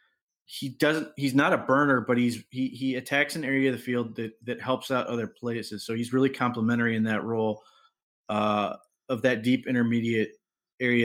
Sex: male